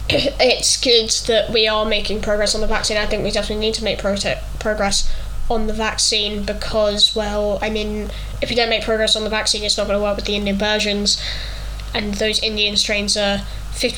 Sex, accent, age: female, British, 10-29